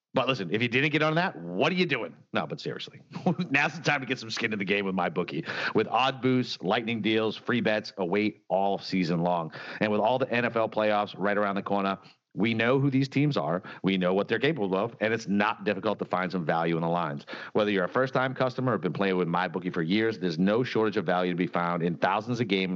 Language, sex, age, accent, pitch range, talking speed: English, male, 40-59, American, 95-125 Hz, 260 wpm